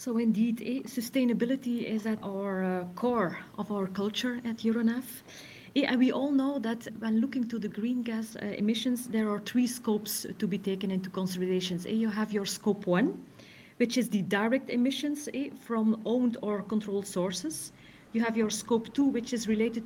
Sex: female